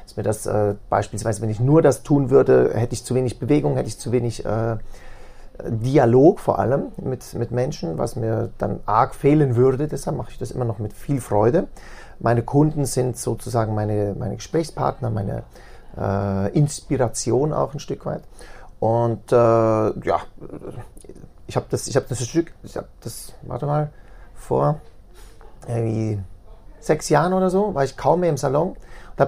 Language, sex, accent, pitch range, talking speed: German, male, German, 110-140 Hz, 170 wpm